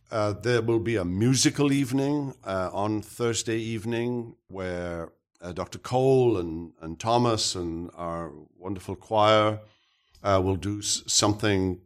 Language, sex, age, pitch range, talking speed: English, male, 60-79, 90-110 Hz, 135 wpm